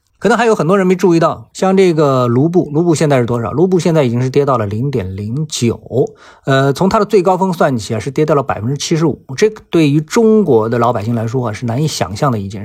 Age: 50-69